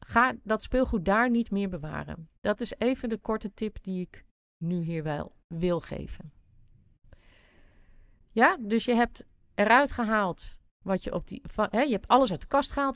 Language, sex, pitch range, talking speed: Dutch, female, 175-245 Hz, 175 wpm